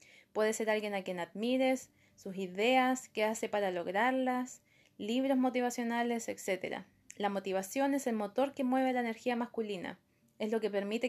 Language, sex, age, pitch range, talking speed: Spanish, female, 20-39, 205-245 Hz, 155 wpm